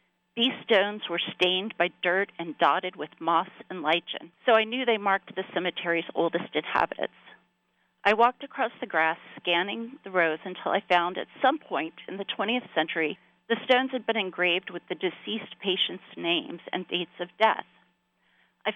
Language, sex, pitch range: English, female, 175-220 Hz